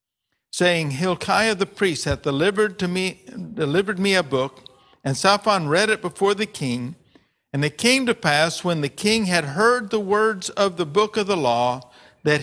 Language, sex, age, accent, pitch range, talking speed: English, male, 50-69, American, 145-200 Hz, 185 wpm